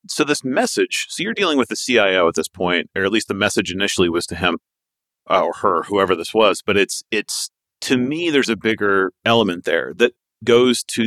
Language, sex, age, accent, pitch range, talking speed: English, male, 40-59, American, 95-120 Hz, 210 wpm